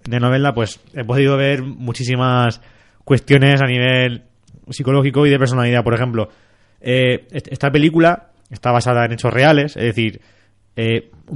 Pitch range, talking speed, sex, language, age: 120-150 Hz, 145 wpm, male, Spanish, 20-39